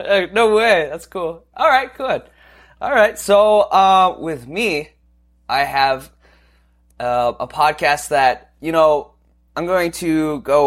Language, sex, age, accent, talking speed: English, male, 20-39, American, 140 wpm